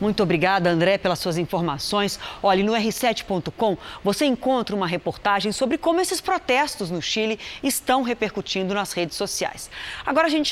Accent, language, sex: Brazilian, Portuguese, female